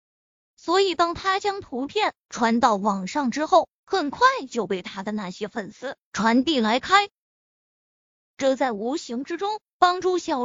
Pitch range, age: 245-340 Hz, 20-39